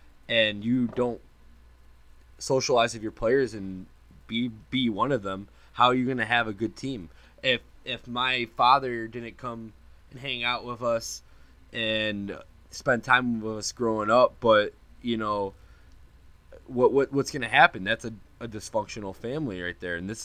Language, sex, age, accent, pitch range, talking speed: English, male, 20-39, American, 90-115 Hz, 170 wpm